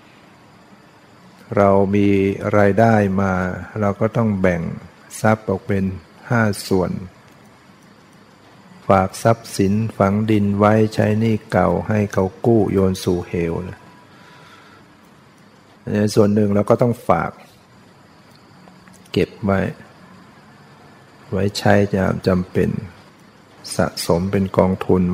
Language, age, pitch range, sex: Thai, 60-79, 95-110 Hz, male